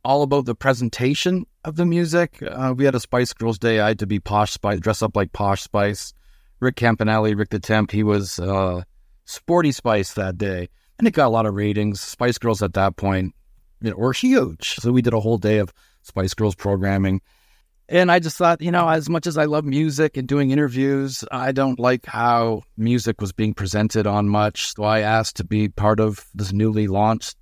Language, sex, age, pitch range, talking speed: English, male, 40-59, 100-125 Hz, 215 wpm